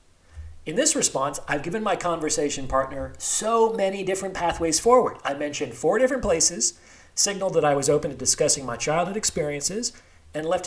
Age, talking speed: 40-59, 170 wpm